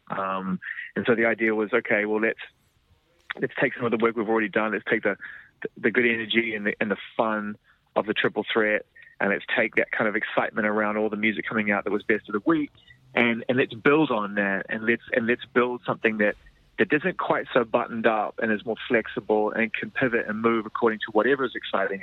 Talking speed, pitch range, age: 235 wpm, 110-130 Hz, 30-49